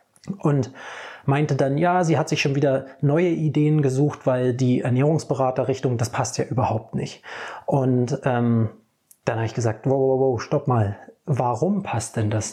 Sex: male